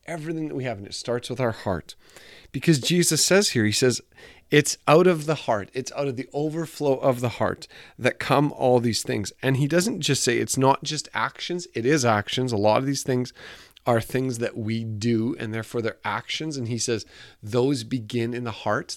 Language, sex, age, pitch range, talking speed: English, male, 30-49, 110-135 Hz, 215 wpm